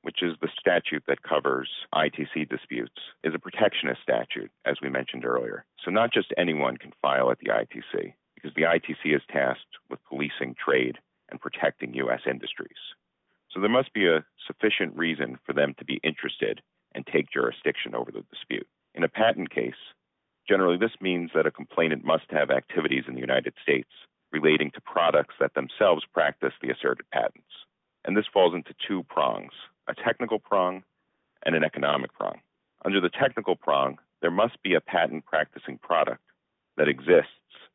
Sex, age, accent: male, 40-59, American